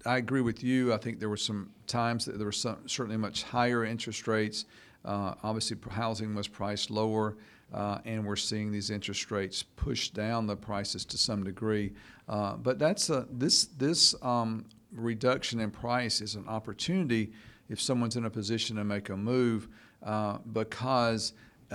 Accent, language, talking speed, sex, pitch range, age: American, English, 175 wpm, male, 105-115 Hz, 50-69